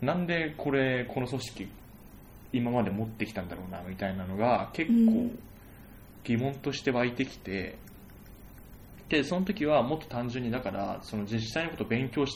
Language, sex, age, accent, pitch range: Japanese, male, 20-39, native, 100-135 Hz